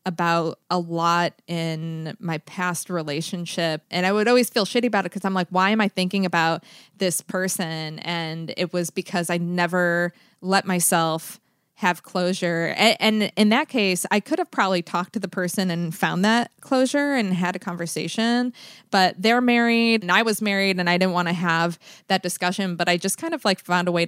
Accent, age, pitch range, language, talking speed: American, 20-39, 170-205 Hz, English, 200 wpm